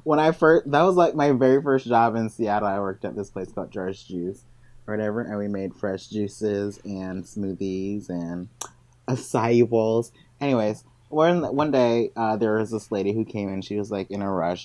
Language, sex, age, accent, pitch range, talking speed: English, male, 20-39, American, 95-120 Hz, 205 wpm